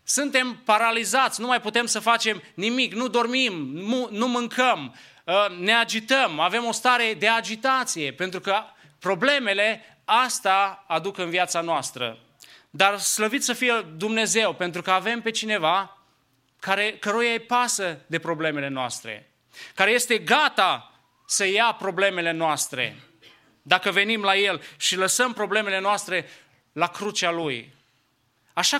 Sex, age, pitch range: male, 30-49, 185-245 Hz